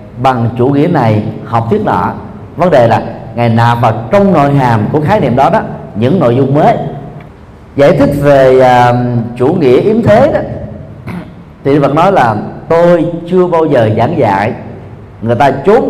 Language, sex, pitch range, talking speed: Vietnamese, male, 115-165 Hz, 175 wpm